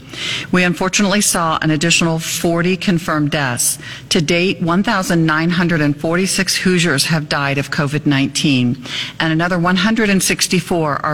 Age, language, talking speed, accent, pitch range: 50-69, English, 100 wpm, American, 145-180 Hz